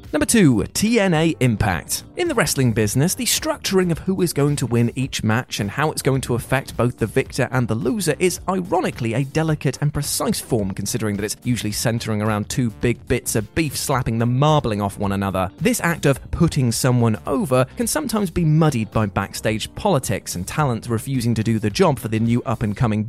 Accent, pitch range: British, 115-160 Hz